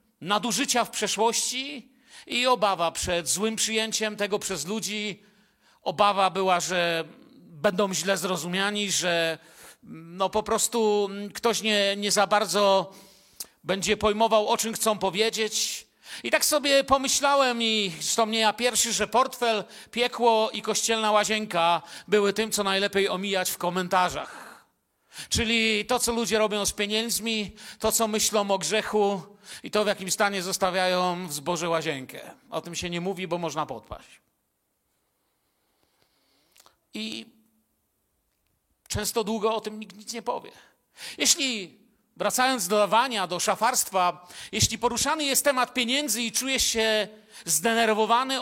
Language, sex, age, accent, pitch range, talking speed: Polish, male, 40-59, native, 190-225 Hz, 130 wpm